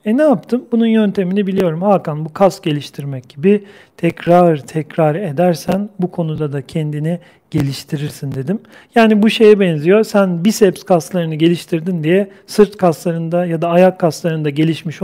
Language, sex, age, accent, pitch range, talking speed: Turkish, male, 40-59, native, 155-185 Hz, 145 wpm